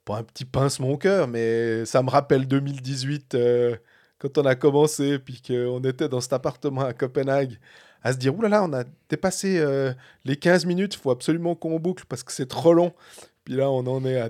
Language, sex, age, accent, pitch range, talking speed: French, male, 30-49, French, 125-165 Hz, 230 wpm